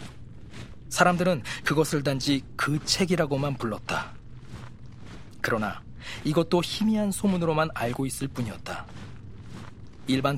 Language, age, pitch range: Korean, 40-59, 110-150 Hz